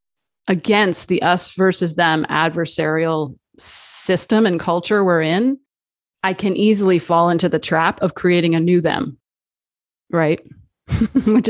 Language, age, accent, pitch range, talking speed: English, 30-49, American, 160-200 Hz, 130 wpm